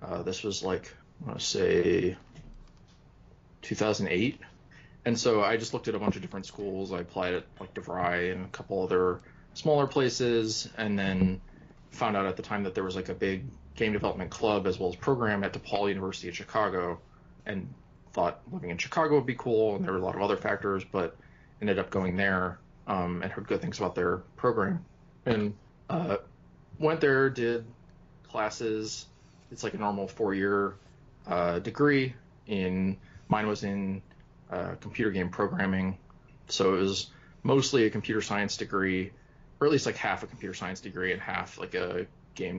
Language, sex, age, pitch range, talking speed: English, male, 20-39, 95-115 Hz, 180 wpm